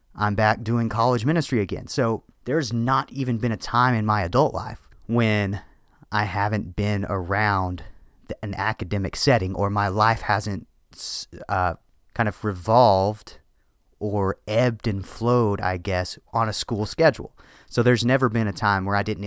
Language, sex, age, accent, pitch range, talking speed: English, male, 30-49, American, 90-110 Hz, 160 wpm